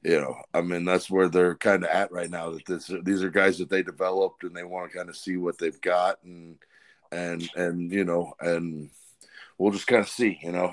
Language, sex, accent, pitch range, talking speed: English, male, American, 85-95 Hz, 240 wpm